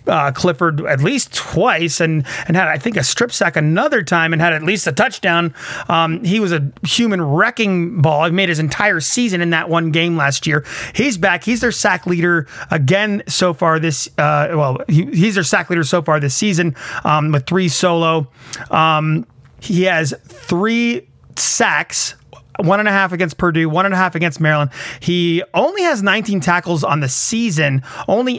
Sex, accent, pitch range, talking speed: male, American, 155-195 Hz, 180 wpm